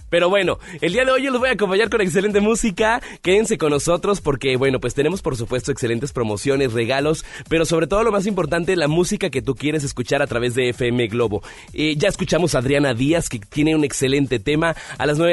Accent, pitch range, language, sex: Mexican, 130-175 Hz, Spanish, male